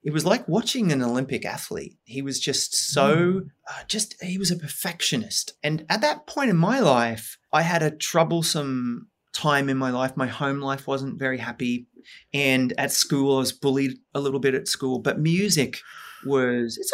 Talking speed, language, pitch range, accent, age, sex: 190 wpm, English, 135-190 Hz, Australian, 30-49, male